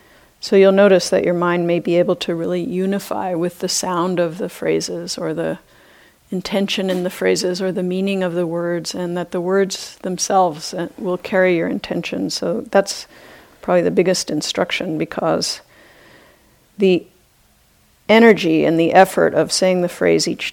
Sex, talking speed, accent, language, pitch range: female, 165 wpm, American, English, 175-195 Hz